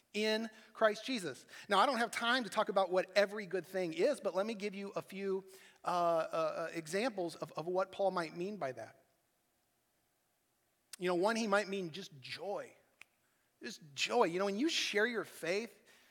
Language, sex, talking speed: English, male, 190 wpm